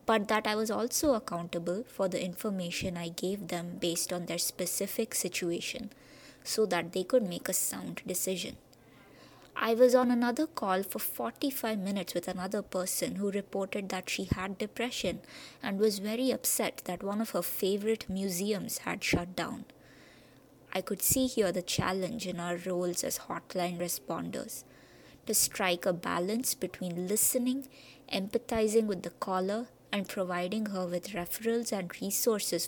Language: English